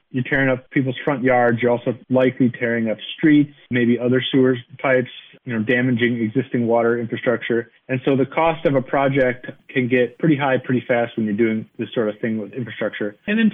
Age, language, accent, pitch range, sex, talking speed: 30-49, English, American, 115-155 Hz, male, 205 wpm